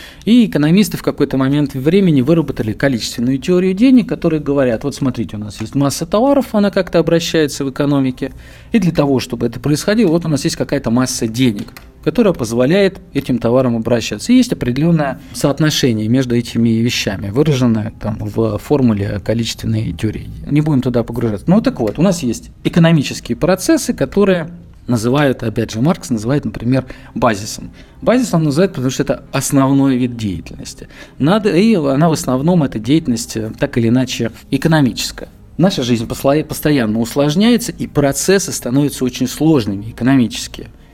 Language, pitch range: Russian, 120-165 Hz